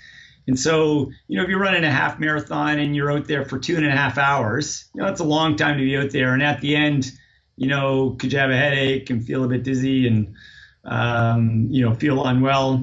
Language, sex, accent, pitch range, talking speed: English, male, American, 130-155 Hz, 245 wpm